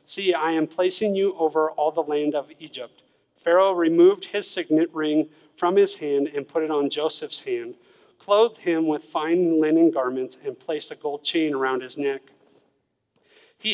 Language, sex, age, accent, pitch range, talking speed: English, male, 40-59, American, 155-185 Hz, 175 wpm